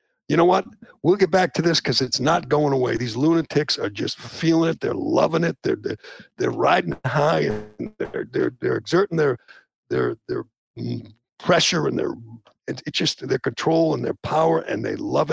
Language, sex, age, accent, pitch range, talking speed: English, male, 60-79, American, 140-170 Hz, 190 wpm